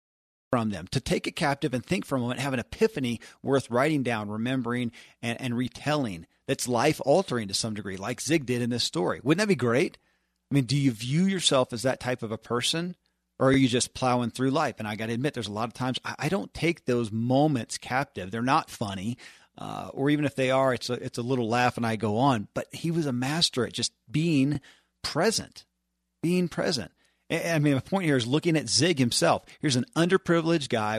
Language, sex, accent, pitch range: English, male, American, 115-140 Hz